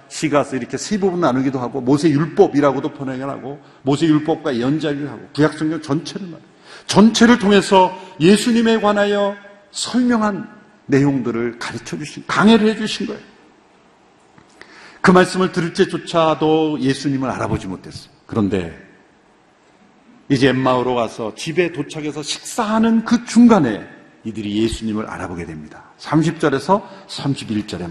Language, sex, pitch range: Korean, male, 130-195 Hz